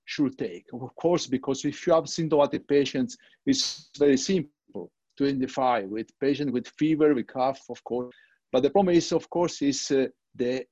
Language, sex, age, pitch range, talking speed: English, male, 50-69, 135-175 Hz, 180 wpm